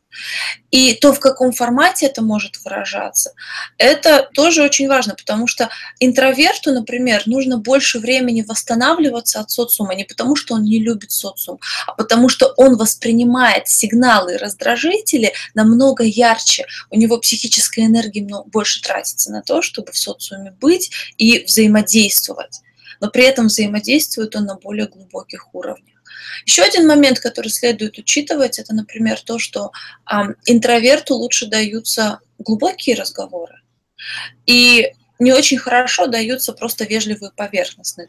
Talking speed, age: 135 wpm, 20-39